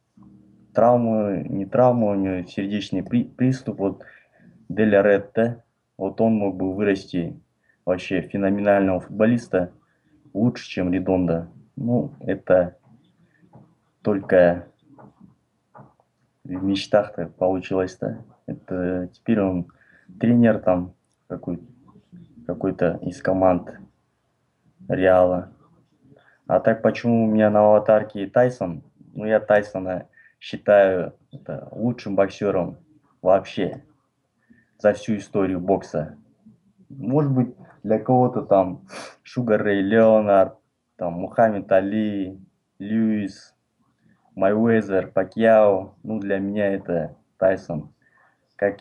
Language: Russian